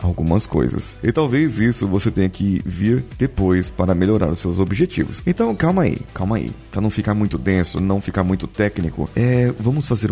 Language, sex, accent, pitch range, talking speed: Portuguese, male, Brazilian, 95-125 Hz, 190 wpm